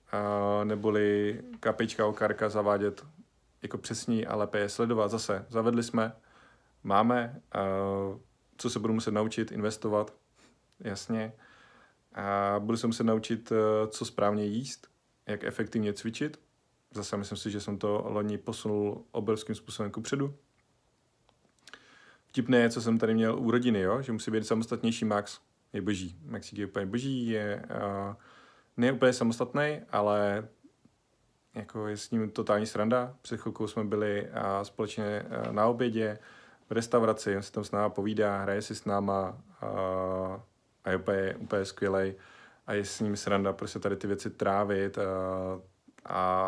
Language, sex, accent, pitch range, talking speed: Czech, male, native, 100-115 Hz, 145 wpm